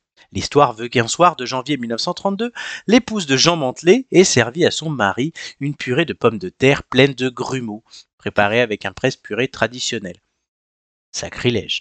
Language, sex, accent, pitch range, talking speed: French, male, French, 120-175 Hz, 160 wpm